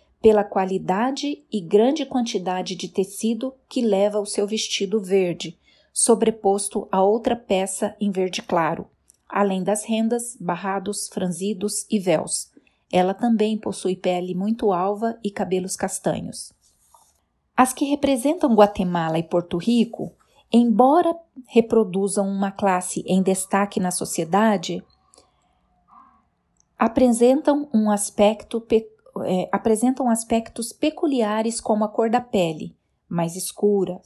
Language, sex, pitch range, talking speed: Portuguese, female, 190-235 Hz, 115 wpm